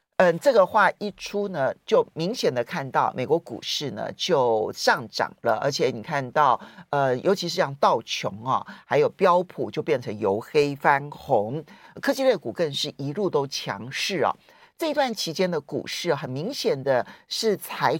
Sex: male